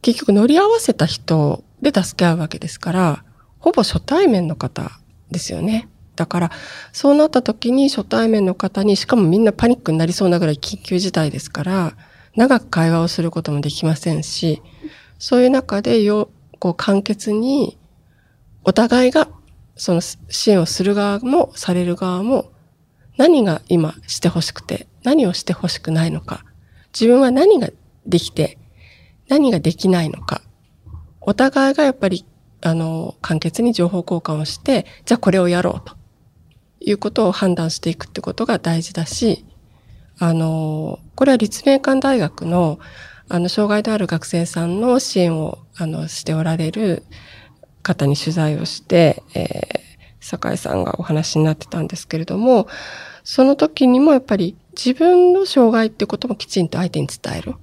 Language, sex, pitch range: Japanese, female, 160-230 Hz